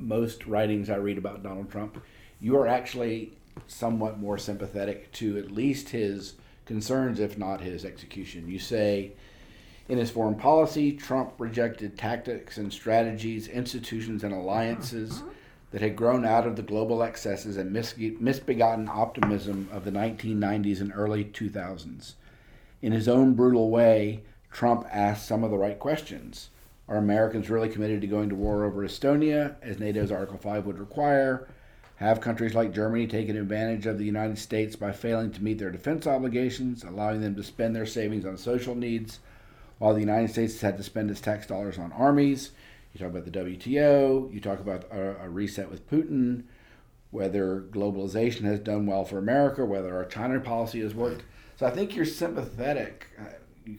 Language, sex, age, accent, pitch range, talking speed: English, male, 50-69, American, 100-120 Hz, 170 wpm